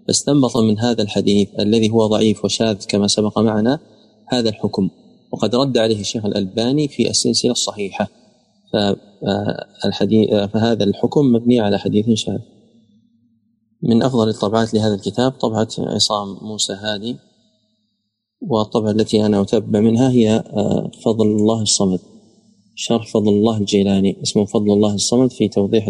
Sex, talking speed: male, 125 wpm